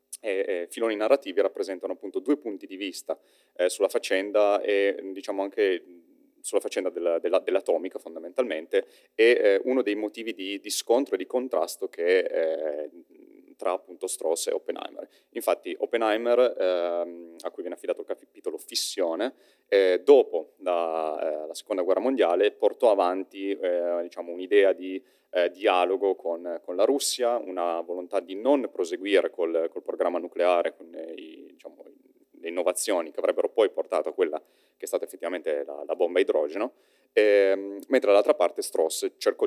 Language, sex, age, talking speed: Italian, male, 30-49, 160 wpm